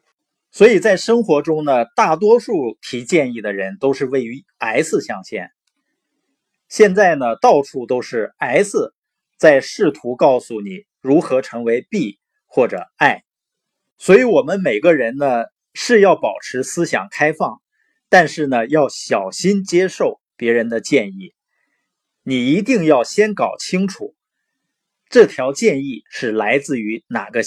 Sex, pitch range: male, 120-200 Hz